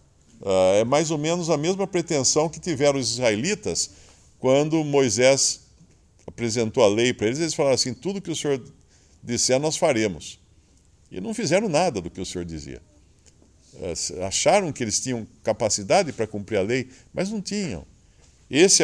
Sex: male